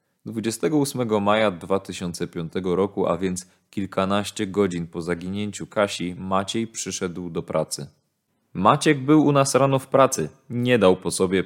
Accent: native